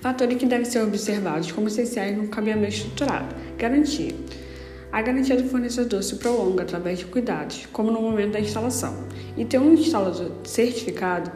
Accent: Brazilian